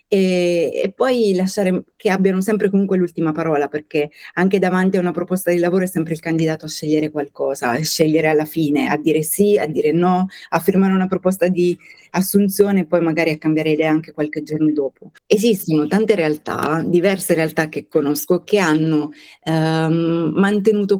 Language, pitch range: Italian, 155-190 Hz